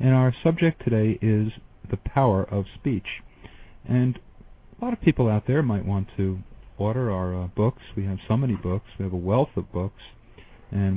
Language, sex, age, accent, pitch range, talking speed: English, male, 50-69, American, 95-120 Hz, 190 wpm